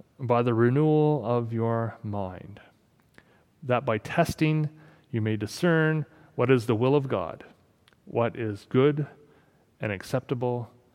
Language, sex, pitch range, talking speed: English, male, 120-155 Hz, 125 wpm